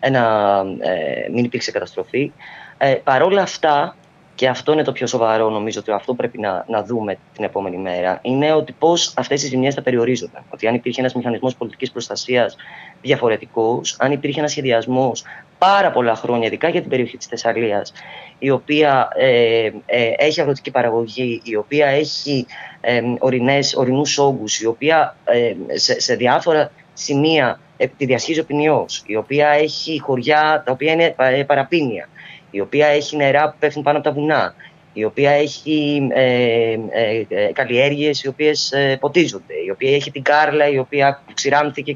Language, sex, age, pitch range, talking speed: Greek, female, 20-39, 125-155 Hz, 165 wpm